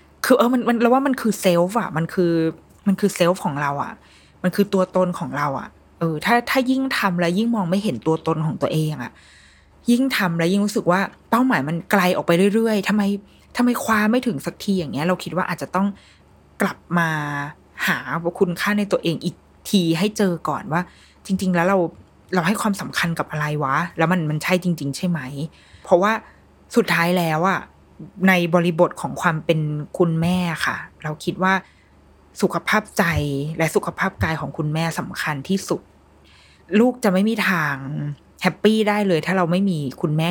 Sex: female